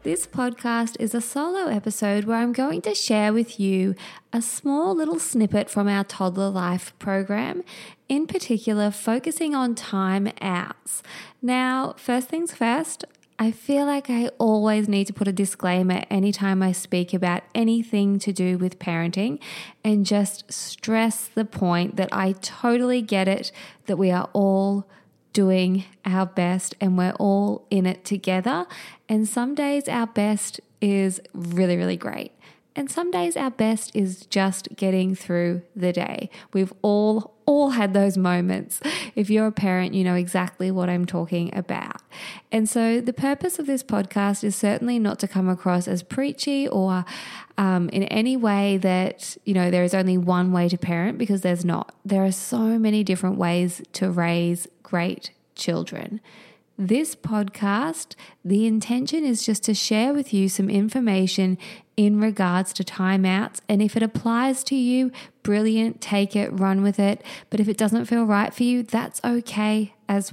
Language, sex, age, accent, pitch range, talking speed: English, female, 20-39, Australian, 190-230 Hz, 165 wpm